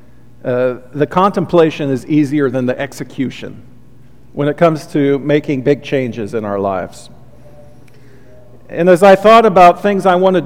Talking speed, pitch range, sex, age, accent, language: 150 wpm, 125-170 Hz, male, 50-69, American, English